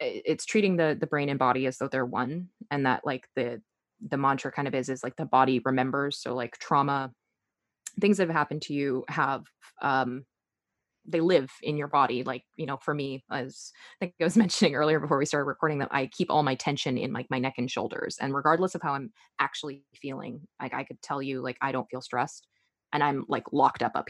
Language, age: English, 20-39